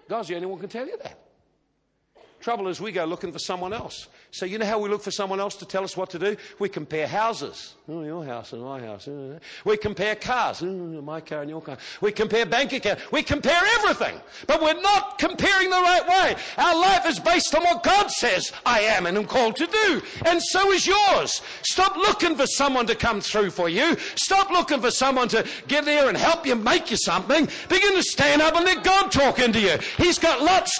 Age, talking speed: 50-69, 225 wpm